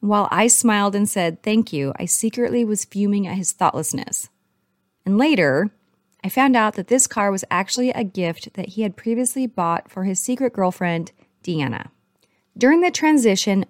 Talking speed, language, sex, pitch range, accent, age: 170 wpm, English, female, 180-235 Hz, American, 30-49